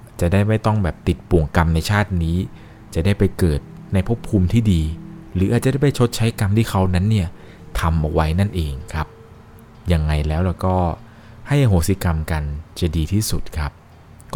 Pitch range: 80-105 Hz